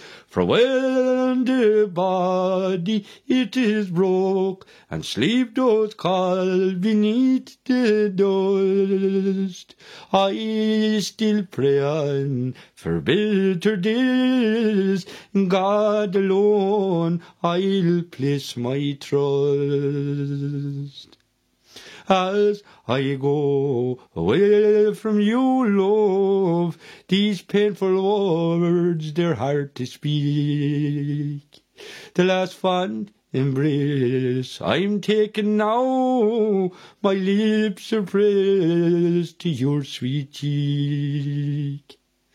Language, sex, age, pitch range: English, male, 60-79, 155-210 Hz